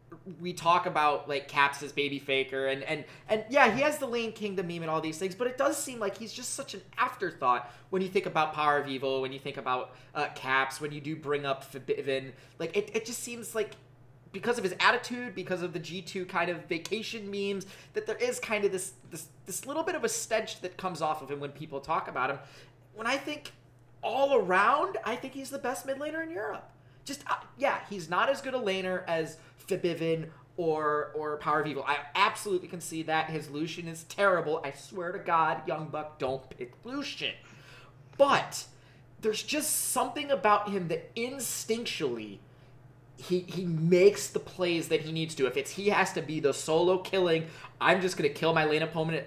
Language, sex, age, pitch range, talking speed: English, male, 20-39, 140-200 Hz, 210 wpm